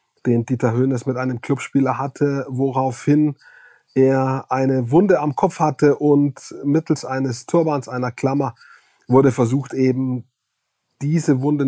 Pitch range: 125-145 Hz